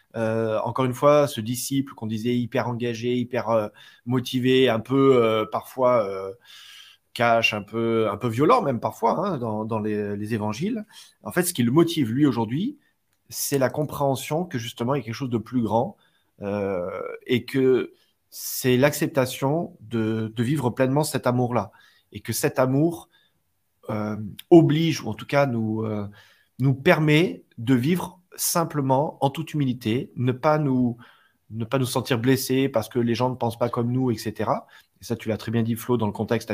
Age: 30-49